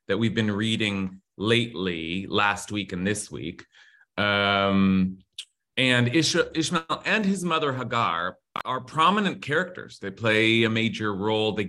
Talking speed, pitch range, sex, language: 140 wpm, 110-150 Hz, male, English